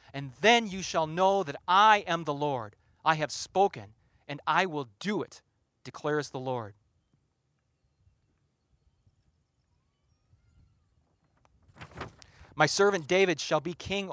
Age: 40-59